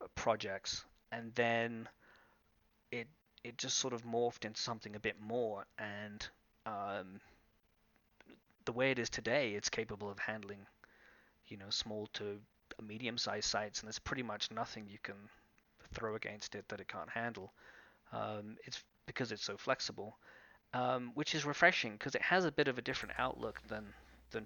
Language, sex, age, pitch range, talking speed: English, male, 30-49, 105-120 Hz, 165 wpm